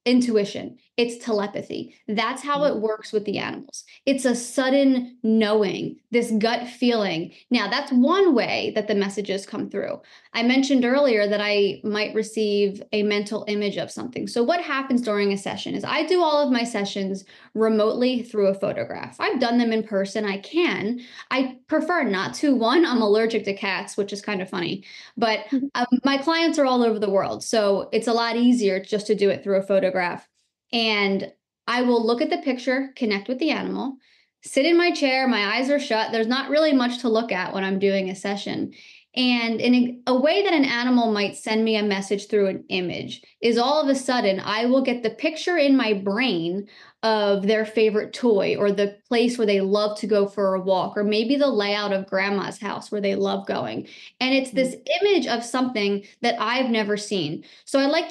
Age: 10-29